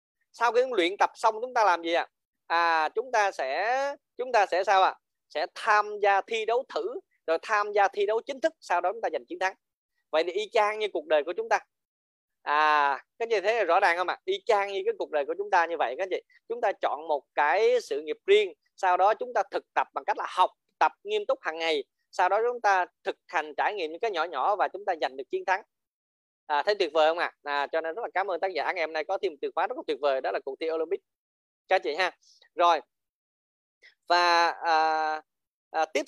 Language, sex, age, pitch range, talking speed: Vietnamese, male, 20-39, 160-255 Hz, 265 wpm